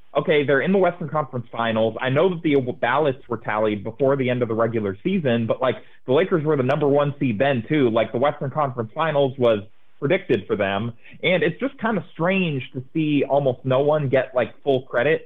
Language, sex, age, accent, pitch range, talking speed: English, male, 30-49, American, 115-145 Hz, 220 wpm